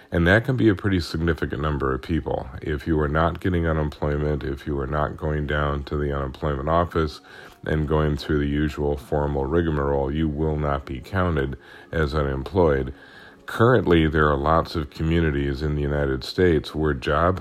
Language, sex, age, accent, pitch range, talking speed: English, male, 40-59, American, 70-85 Hz, 180 wpm